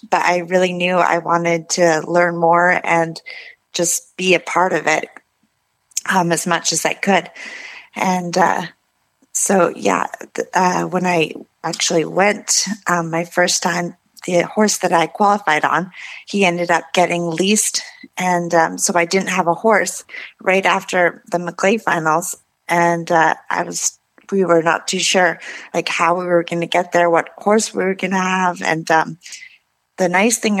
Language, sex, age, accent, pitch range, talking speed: English, female, 30-49, American, 170-190 Hz, 175 wpm